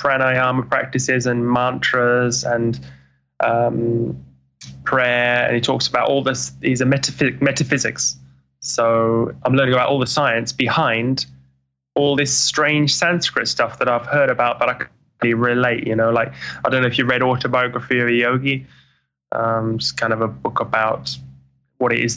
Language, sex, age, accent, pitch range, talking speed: English, male, 10-29, British, 110-130 Hz, 170 wpm